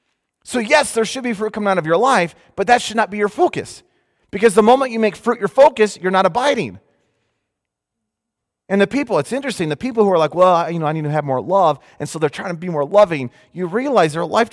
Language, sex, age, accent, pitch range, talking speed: English, male, 30-49, American, 140-215 Hz, 250 wpm